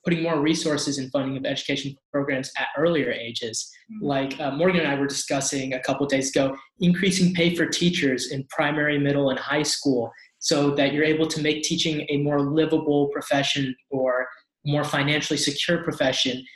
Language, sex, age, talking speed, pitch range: English, male, 20-39, 180 wpm, 140-160 Hz